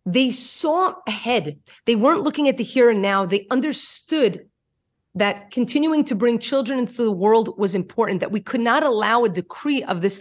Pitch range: 195-250 Hz